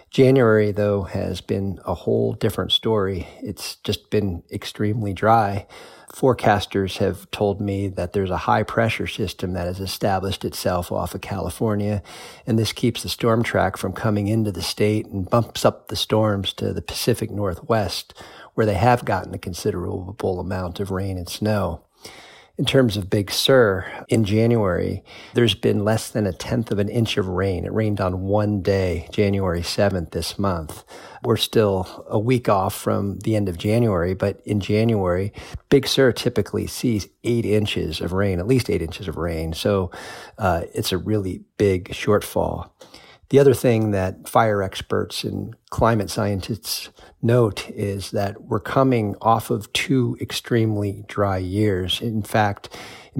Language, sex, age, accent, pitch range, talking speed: English, male, 40-59, American, 95-110 Hz, 160 wpm